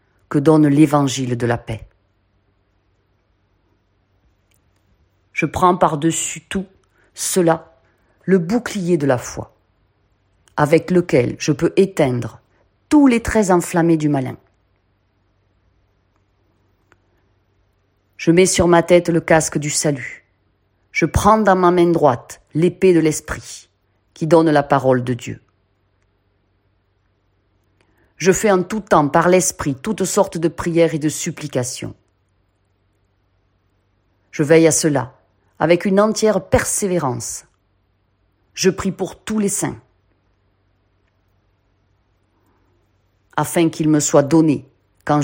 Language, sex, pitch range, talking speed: French, female, 100-165 Hz, 115 wpm